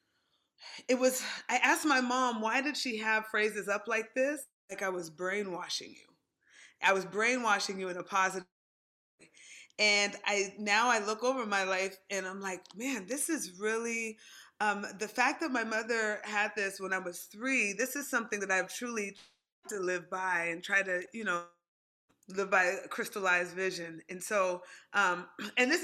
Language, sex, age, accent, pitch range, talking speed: English, female, 20-39, American, 180-230 Hz, 185 wpm